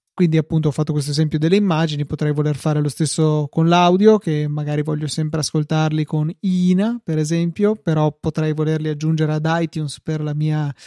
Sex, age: male, 30-49